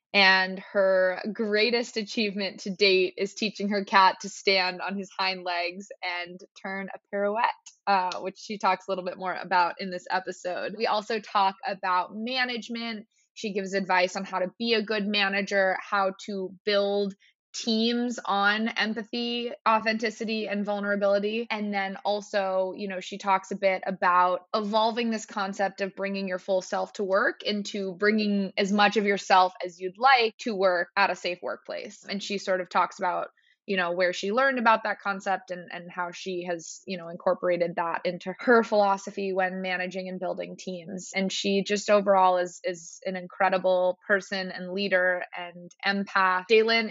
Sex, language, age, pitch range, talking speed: female, English, 20-39, 185-210 Hz, 175 wpm